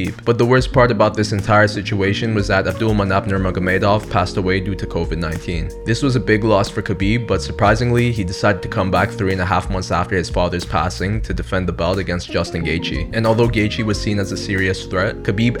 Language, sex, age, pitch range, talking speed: English, male, 20-39, 95-115 Hz, 220 wpm